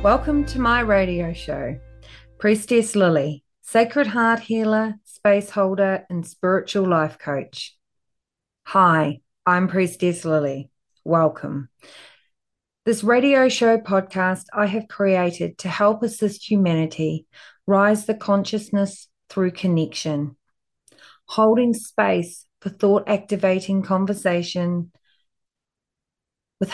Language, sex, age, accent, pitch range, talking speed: English, female, 30-49, Australian, 175-210 Hz, 100 wpm